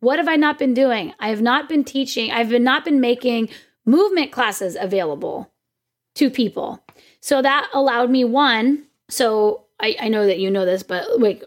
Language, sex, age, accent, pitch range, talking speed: English, female, 10-29, American, 210-275 Hz, 185 wpm